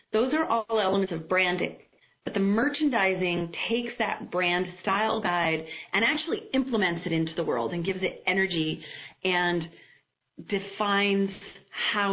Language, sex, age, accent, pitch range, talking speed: English, female, 40-59, American, 175-250 Hz, 140 wpm